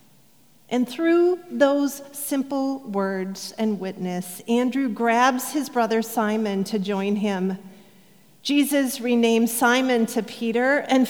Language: English